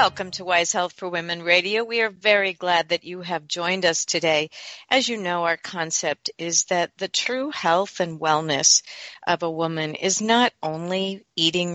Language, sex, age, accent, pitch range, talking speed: English, female, 50-69, American, 170-210 Hz, 185 wpm